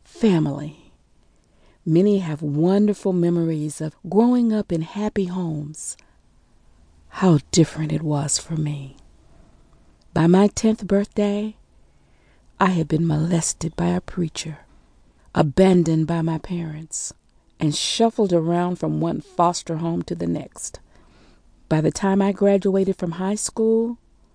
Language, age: English, 40-59